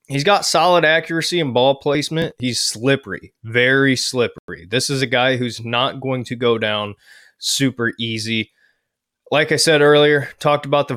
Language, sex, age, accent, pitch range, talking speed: English, male, 20-39, American, 115-140 Hz, 165 wpm